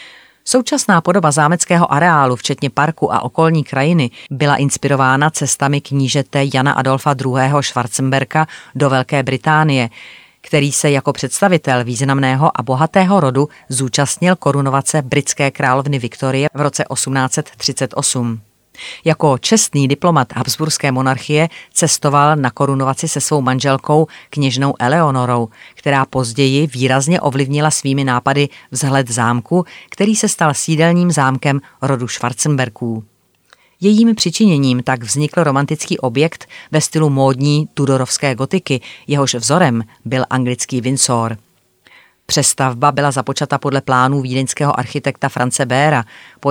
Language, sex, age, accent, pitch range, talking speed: Czech, female, 30-49, native, 130-155 Hz, 115 wpm